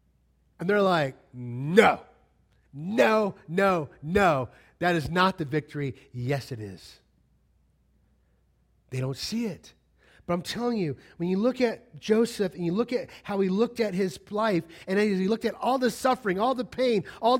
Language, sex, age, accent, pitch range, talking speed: English, male, 30-49, American, 120-200 Hz, 170 wpm